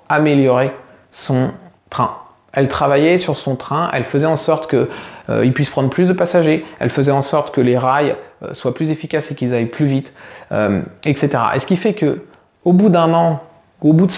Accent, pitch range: French, 125-155 Hz